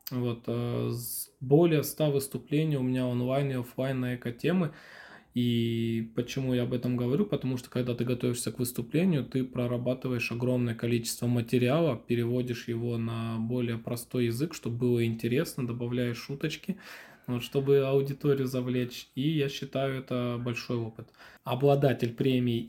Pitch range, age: 120-140 Hz, 20-39